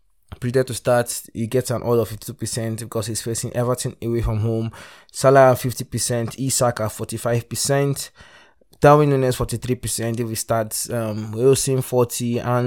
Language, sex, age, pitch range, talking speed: English, male, 20-39, 110-125 Hz, 135 wpm